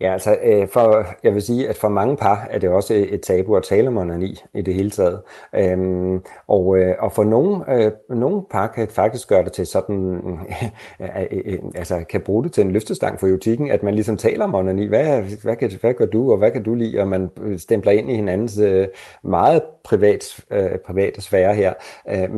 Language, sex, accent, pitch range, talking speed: Danish, male, native, 95-115 Hz, 210 wpm